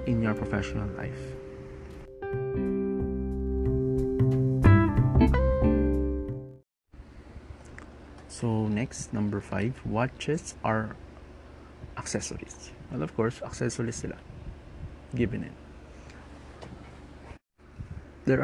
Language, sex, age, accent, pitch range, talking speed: Filipino, male, 20-39, native, 75-120 Hz, 60 wpm